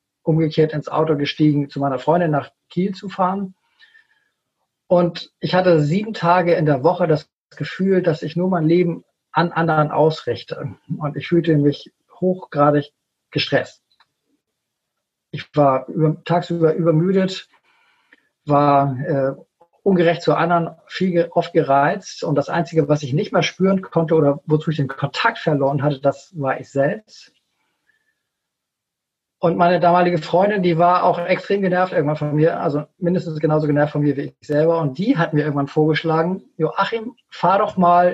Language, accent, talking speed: German, German, 155 wpm